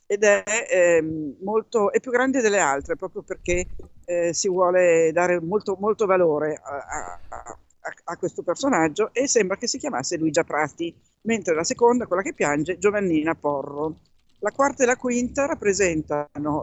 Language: Italian